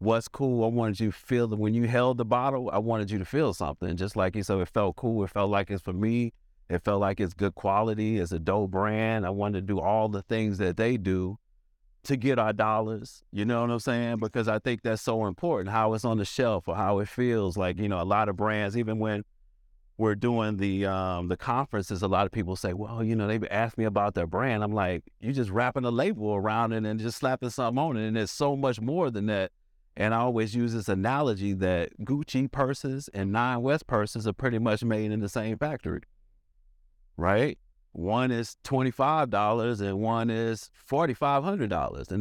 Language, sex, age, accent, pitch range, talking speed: English, male, 30-49, American, 100-120 Hz, 225 wpm